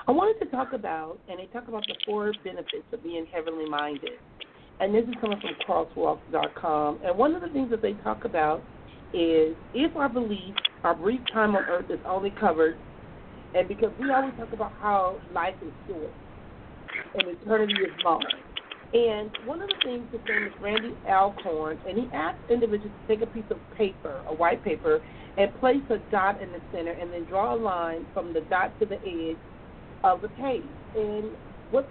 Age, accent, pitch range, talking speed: 40-59, American, 180-250 Hz, 195 wpm